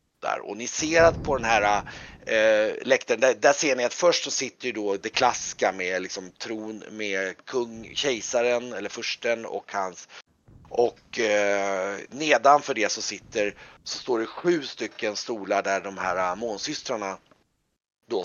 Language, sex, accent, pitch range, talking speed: Swedish, male, native, 95-130 Hz, 165 wpm